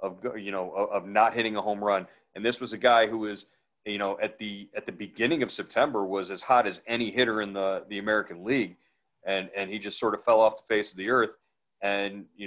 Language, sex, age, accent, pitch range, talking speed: English, male, 40-59, American, 100-115 Hz, 245 wpm